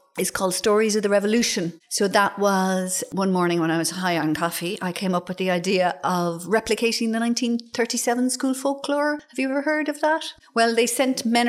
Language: English